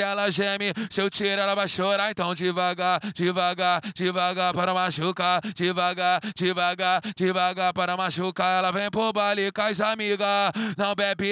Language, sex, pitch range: English, male, 185-210 Hz